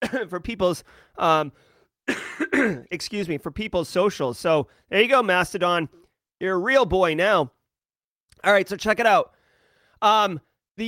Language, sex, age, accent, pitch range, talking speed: English, male, 30-49, American, 185-245 Hz, 145 wpm